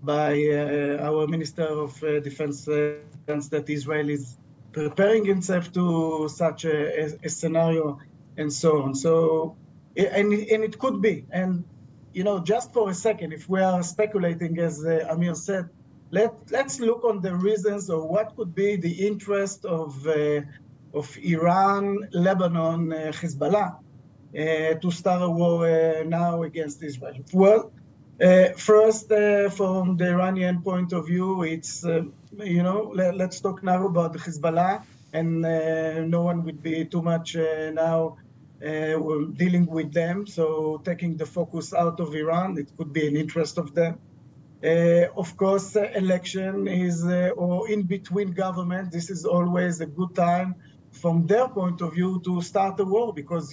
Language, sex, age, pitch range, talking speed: English, male, 50-69, 155-185 Hz, 165 wpm